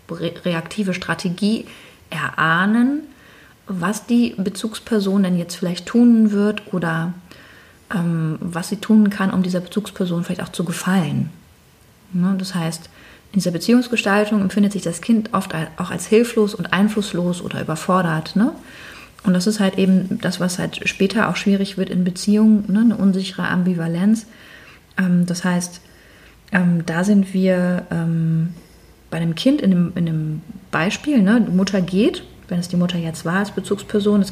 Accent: German